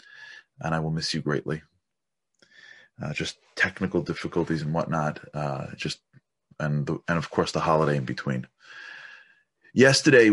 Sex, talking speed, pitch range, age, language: male, 140 wpm, 80-105 Hz, 30-49, English